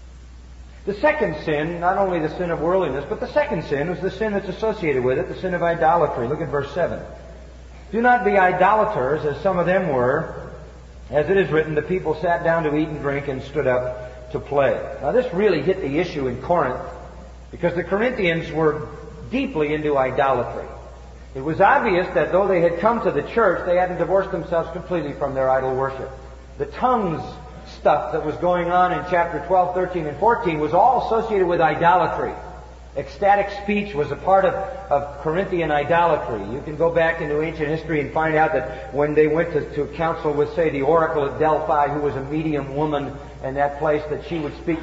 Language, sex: English, male